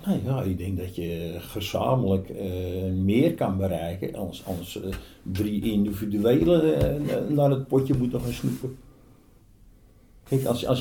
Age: 50-69